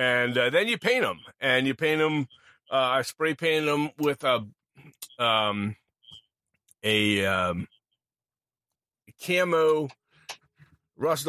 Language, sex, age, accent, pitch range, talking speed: English, male, 30-49, American, 110-140 Hz, 115 wpm